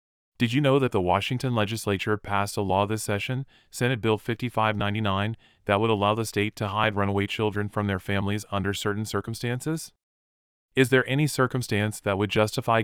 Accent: American